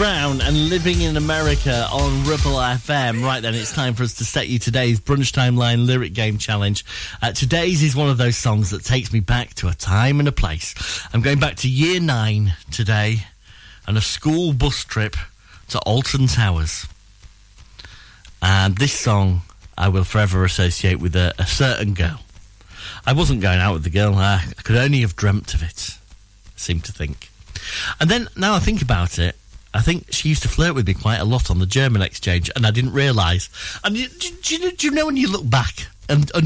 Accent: British